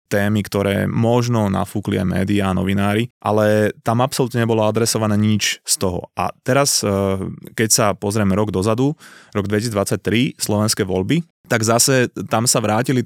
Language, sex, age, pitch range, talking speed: Slovak, male, 20-39, 100-115 Hz, 145 wpm